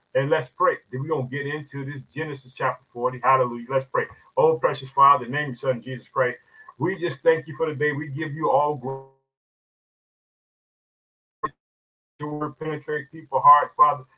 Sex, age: male, 50-69